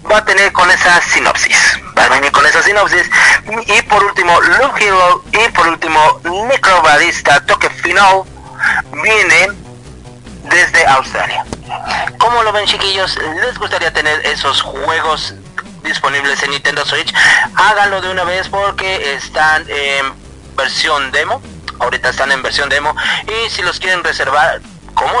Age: 40-59